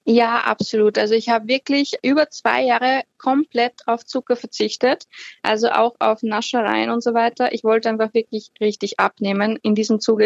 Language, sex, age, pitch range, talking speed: German, female, 20-39, 220-250 Hz, 170 wpm